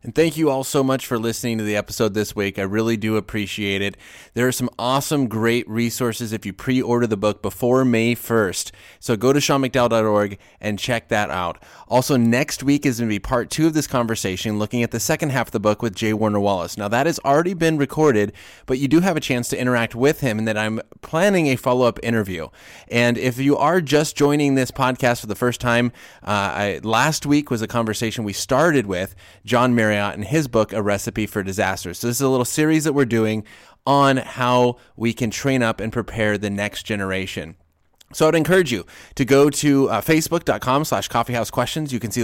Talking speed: 215 wpm